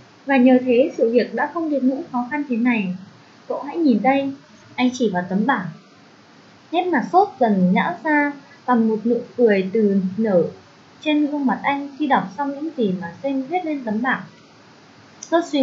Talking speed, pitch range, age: 195 wpm, 215-300 Hz, 20-39